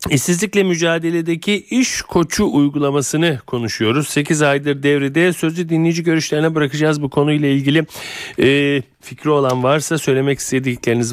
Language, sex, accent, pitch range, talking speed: Turkish, male, native, 120-150 Hz, 115 wpm